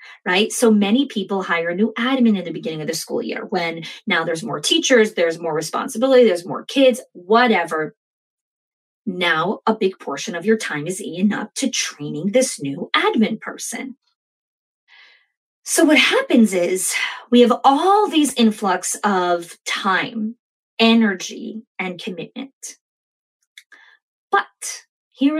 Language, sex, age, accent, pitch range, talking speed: English, female, 20-39, American, 195-250 Hz, 140 wpm